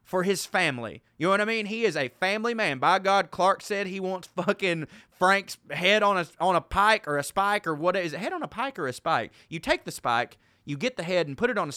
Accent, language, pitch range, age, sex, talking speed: American, English, 135-185 Hz, 20-39, male, 275 wpm